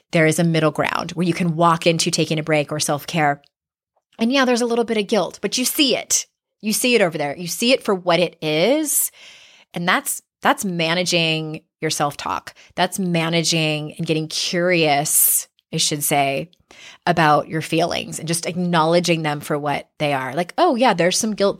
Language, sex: English, female